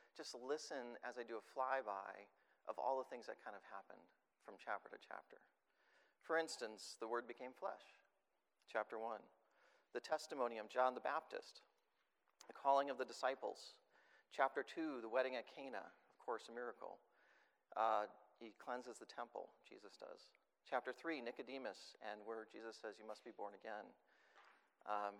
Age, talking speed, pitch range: 40-59, 160 wpm, 115-150 Hz